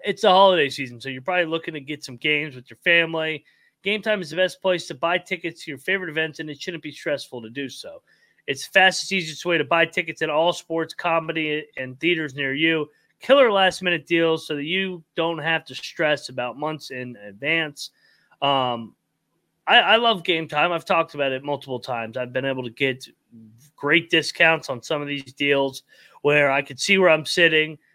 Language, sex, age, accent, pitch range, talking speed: English, male, 30-49, American, 145-180 Hz, 210 wpm